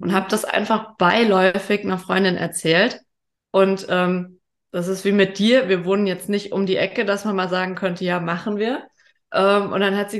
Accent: German